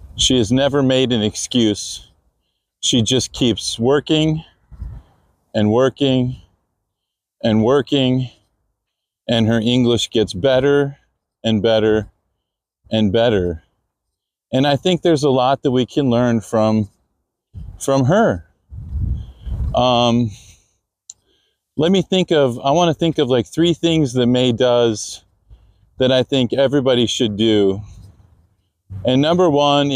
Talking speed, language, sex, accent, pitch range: 120 wpm, English, male, American, 100-135 Hz